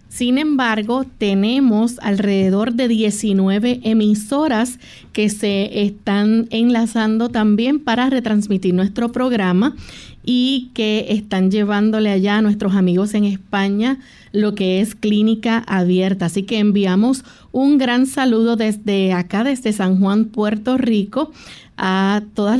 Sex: female